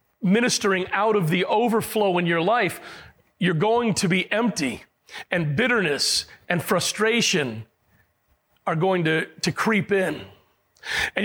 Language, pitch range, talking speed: English, 155-200 Hz, 130 wpm